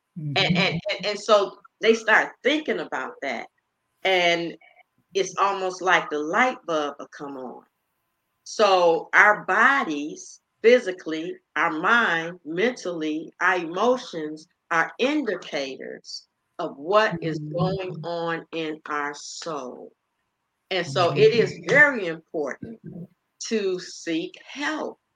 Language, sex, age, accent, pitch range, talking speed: English, female, 50-69, American, 160-210 Hz, 110 wpm